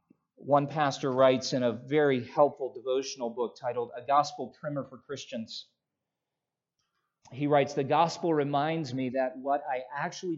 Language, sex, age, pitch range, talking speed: English, male, 40-59, 140-180 Hz, 145 wpm